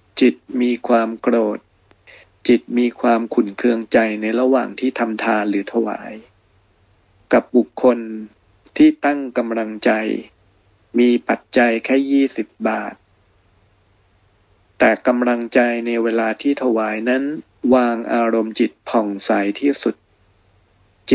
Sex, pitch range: male, 105-125 Hz